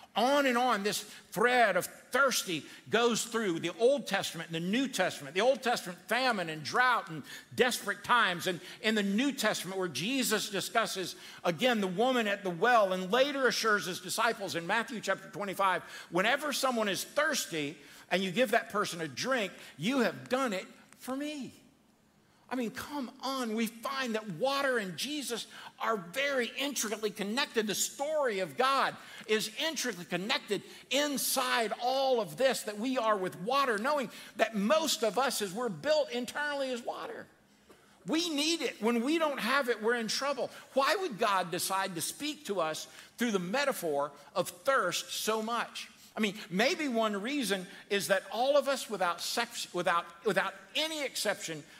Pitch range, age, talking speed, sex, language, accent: 190-260 Hz, 60-79, 170 wpm, male, English, American